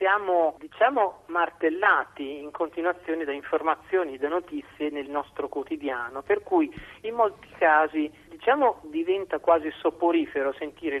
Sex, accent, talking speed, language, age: male, native, 120 wpm, Italian, 40-59